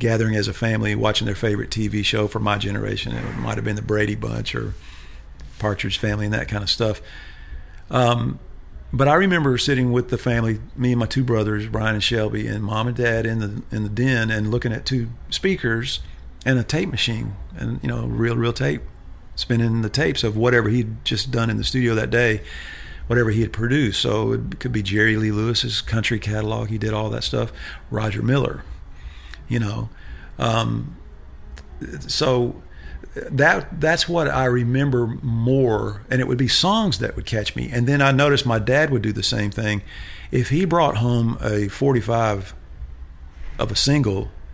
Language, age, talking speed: English, 40-59, 185 wpm